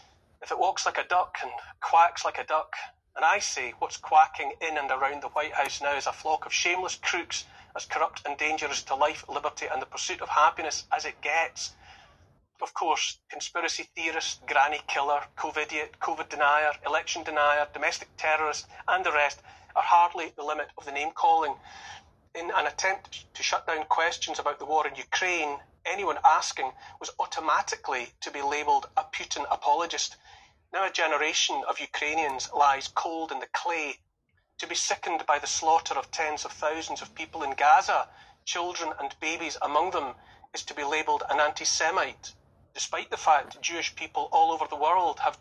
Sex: male